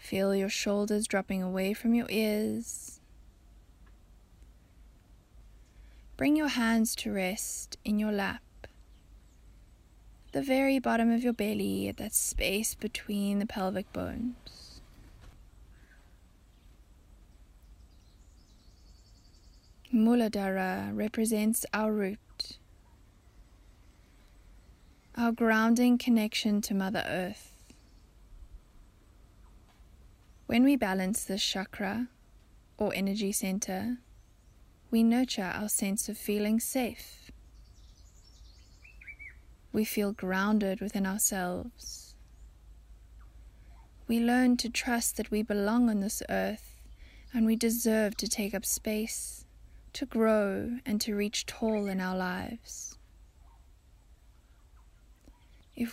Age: 20-39